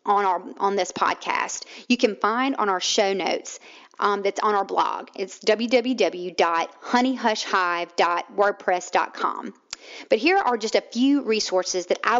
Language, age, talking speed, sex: English, 40-59, 140 wpm, female